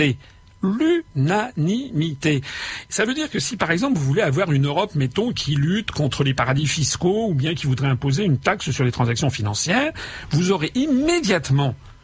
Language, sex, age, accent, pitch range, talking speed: French, male, 50-69, French, 135-210 Hz, 170 wpm